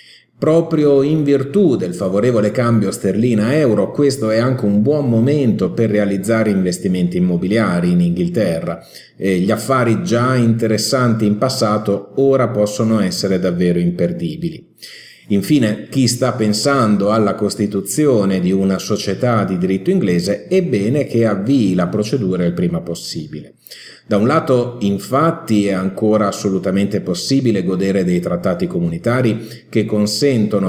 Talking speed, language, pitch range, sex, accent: 130 wpm, Italian, 95-125 Hz, male, native